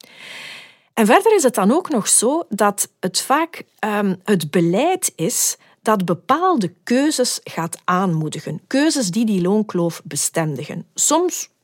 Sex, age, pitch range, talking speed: female, 40-59, 175-260 Hz, 135 wpm